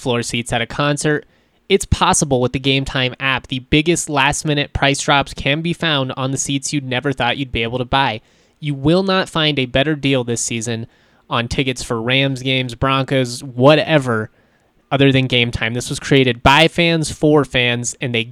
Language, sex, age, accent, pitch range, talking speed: English, male, 20-39, American, 130-150 Hz, 200 wpm